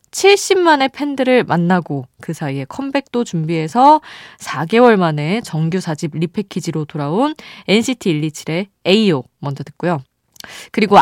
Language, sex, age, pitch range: Korean, female, 20-39, 160-235 Hz